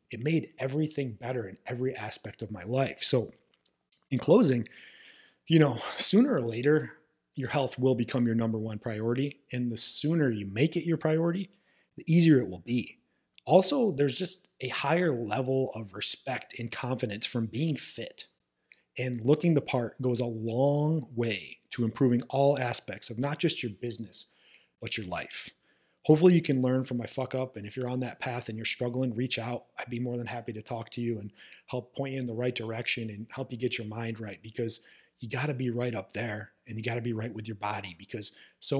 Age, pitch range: 30-49, 115-140 Hz